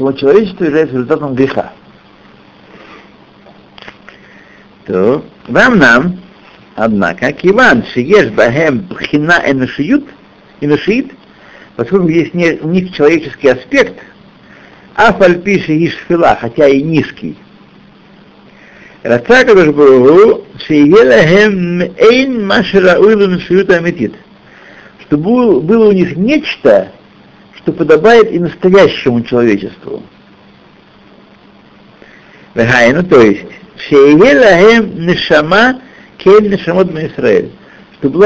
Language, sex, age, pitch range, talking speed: Russian, male, 60-79, 150-215 Hz, 65 wpm